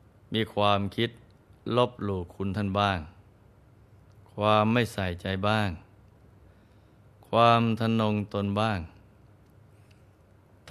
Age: 20-39